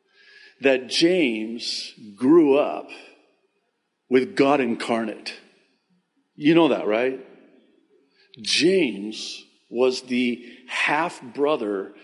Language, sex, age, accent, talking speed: English, male, 50-69, American, 75 wpm